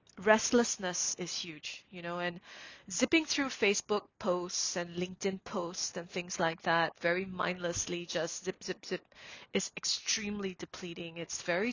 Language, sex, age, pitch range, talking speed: English, female, 30-49, 175-205 Hz, 145 wpm